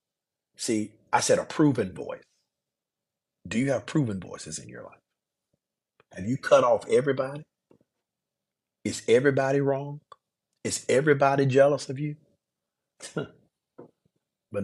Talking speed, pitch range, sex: 115 wpm, 105-145 Hz, male